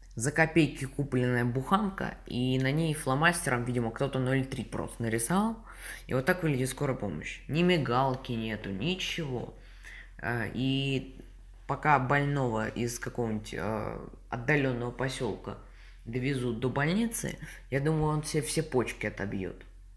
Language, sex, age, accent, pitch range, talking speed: Russian, female, 20-39, native, 110-145 Hz, 120 wpm